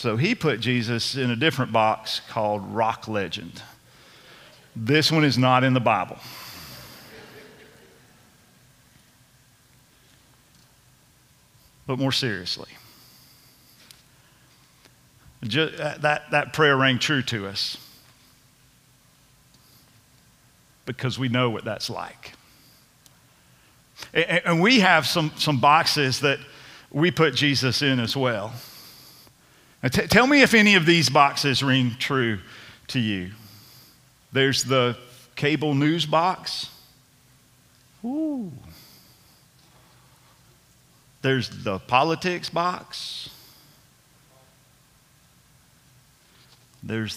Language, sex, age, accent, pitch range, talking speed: English, male, 50-69, American, 120-155 Hz, 90 wpm